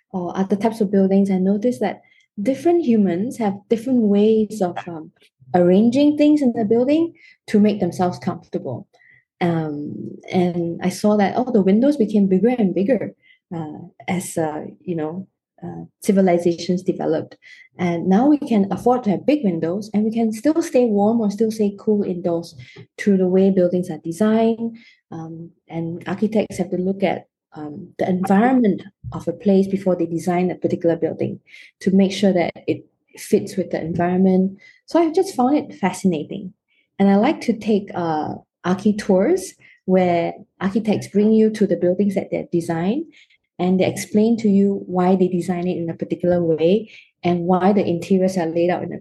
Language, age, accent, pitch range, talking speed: English, 20-39, Malaysian, 175-215 Hz, 175 wpm